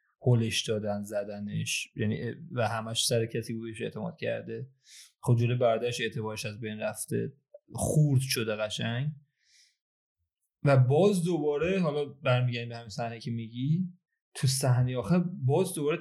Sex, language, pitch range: male, Persian, 115-150 Hz